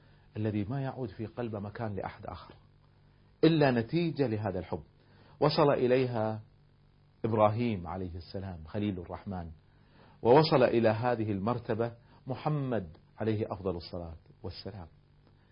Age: 40-59